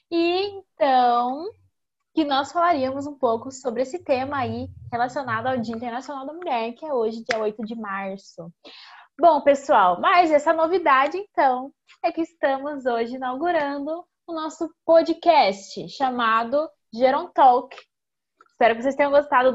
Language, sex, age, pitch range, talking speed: Portuguese, female, 10-29, 230-295 Hz, 140 wpm